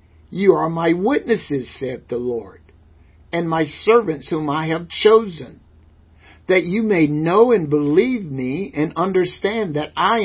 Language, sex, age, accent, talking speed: English, male, 60-79, American, 145 wpm